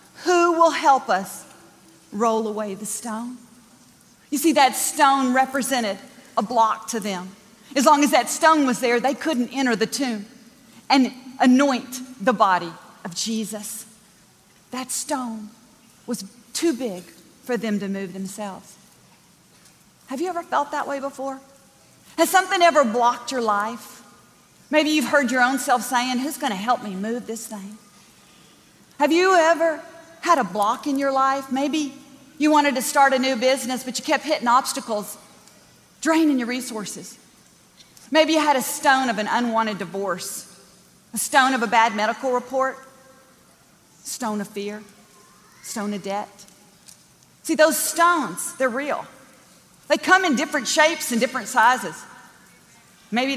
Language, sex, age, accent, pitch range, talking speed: English, female, 40-59, American, 210-275 Hz, 150 wpm